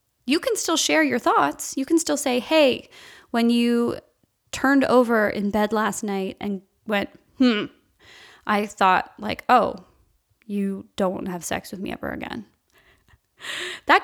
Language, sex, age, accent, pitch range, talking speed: English, female, 10-29, American, 205-275 Hz, 150 wpm